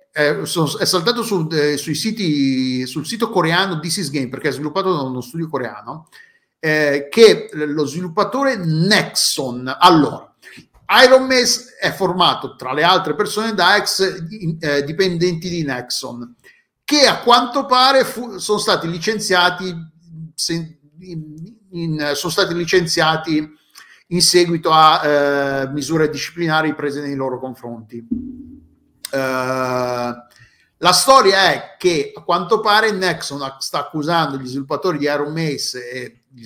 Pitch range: 145-195 Hz